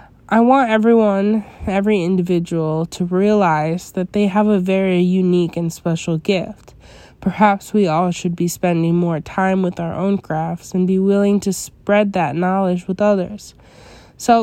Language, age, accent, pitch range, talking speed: English, 20-39, American, 175-210 Hz, 160 wpm